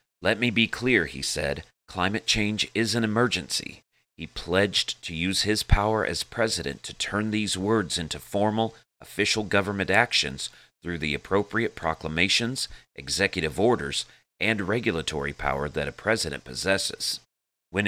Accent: American